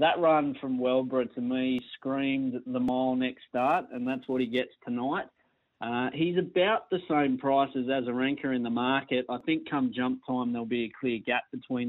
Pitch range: 120-135 Hz